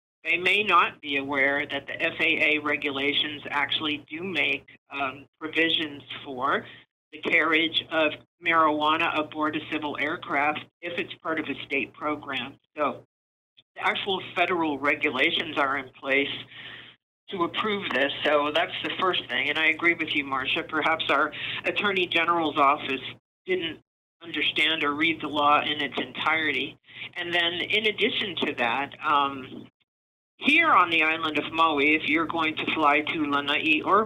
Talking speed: 155 wpm